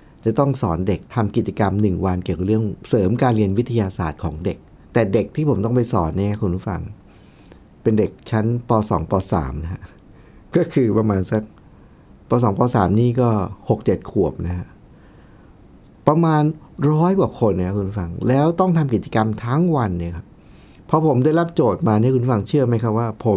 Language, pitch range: Thai, 100-130 Hz